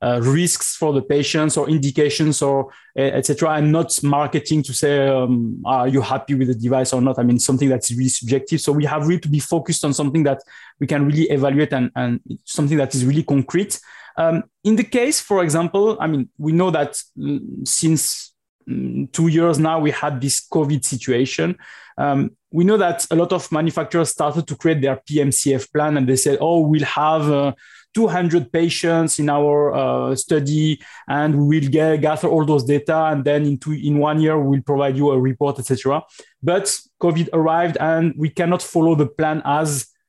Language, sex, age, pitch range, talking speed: English, male, 20-39, 140-165 Hz, 195 wpm